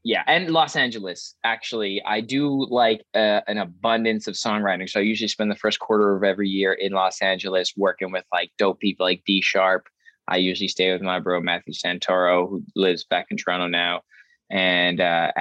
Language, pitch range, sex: English, 95-110 Hz, male